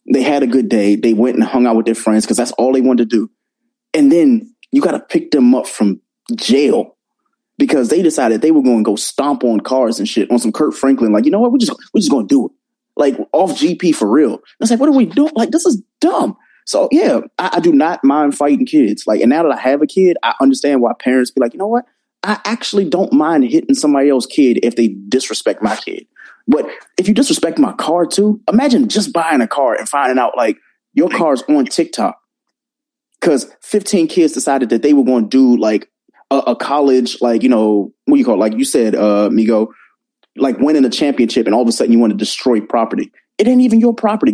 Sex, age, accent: male, 20-39, American